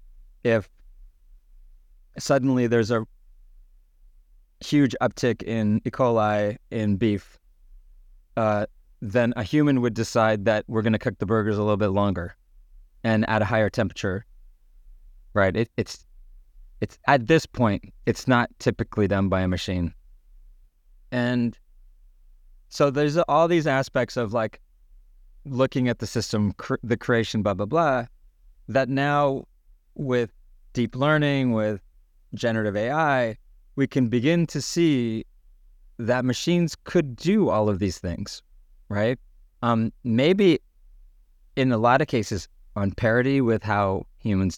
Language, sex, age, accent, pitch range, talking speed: English, male, 30-49, American, 95-125 Hz, 135 wpm